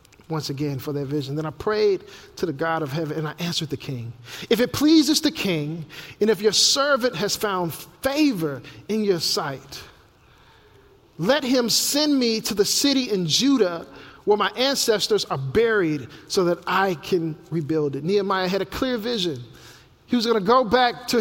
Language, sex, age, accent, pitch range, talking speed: English, male, 50-69, American, 170-230 Hz, 185 wpm